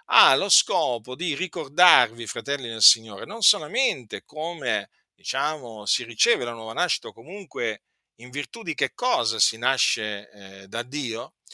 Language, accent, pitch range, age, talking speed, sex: Italian, native, 120-185 Hz, 50-69, 155 wpm, male